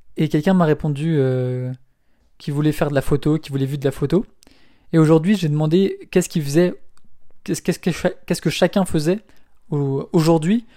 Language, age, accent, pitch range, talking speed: French, 20-39, French, 140-175 Hz, 175 wpm